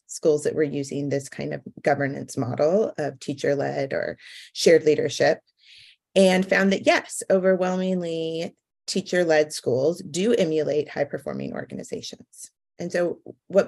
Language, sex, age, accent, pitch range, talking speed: English, female, 30-49, American, 145-195 Hz, 125 wpm